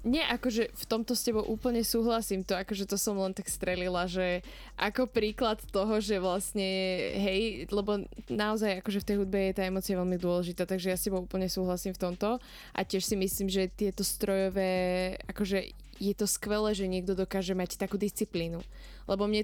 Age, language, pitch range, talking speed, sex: 20-39, Slovak, 190-215 Hz, 185 wpm, female